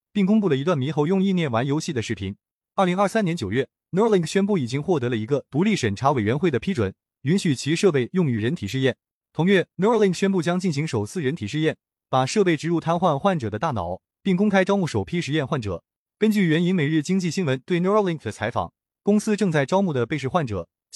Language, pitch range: Chinese, 130-190 Hz